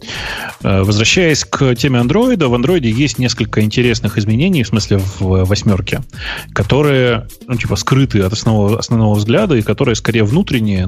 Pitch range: 100-120 Hz